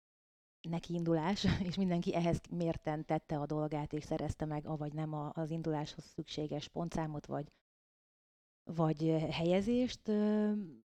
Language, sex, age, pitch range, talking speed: Hungarian, female, 30-49, 155-180 Hz, 115 wpm